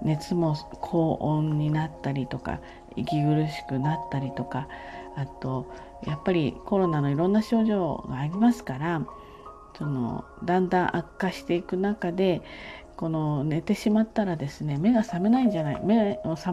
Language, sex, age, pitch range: Japanese, female, 40-59, 140-190 Hz